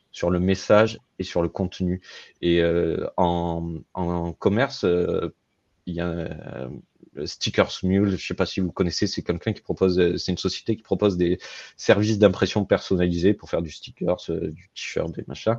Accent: French